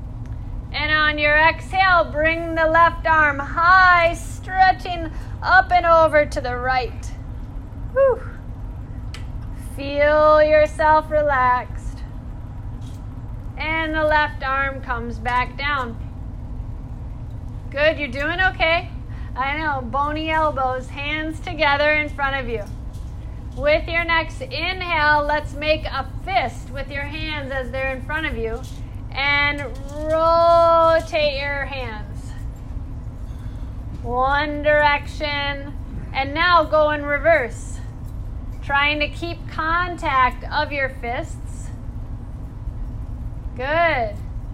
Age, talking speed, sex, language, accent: 30-49, 100 wpm, female, English, American